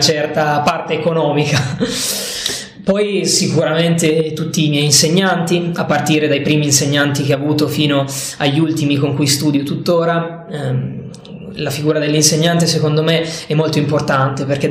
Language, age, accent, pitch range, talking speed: Italian, 20-39, native, 150-175 Hz, 140 wpm